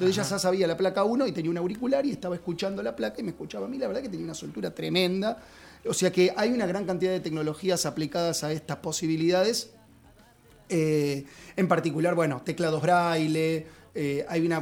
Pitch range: 160-205 Hz